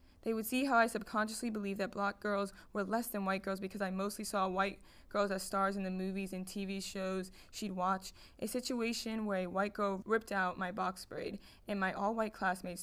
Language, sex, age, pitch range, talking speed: English, female, 20-39, 190-220 Hz, 215 wpm